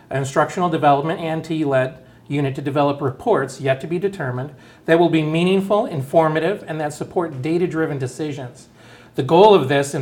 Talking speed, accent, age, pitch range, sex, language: 170 wpm, American, 40-59, 135-165 Hz, male, English